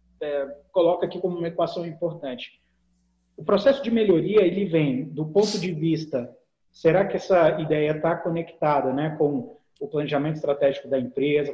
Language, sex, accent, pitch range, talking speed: Portuguese, male, Brazilian, 145-185 Hz, 155 wpm